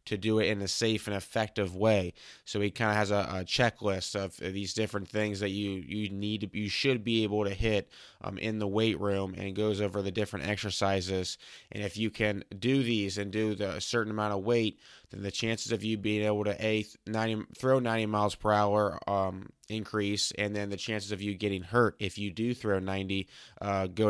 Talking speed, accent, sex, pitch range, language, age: 215 wpm, American, male, 100-110 Hz, English, 20-39